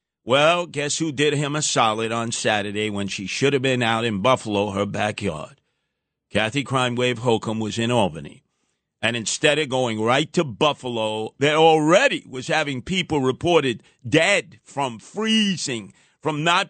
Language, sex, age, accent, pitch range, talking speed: English, male, 50-69, American, 140-200 Hz, 160 wpm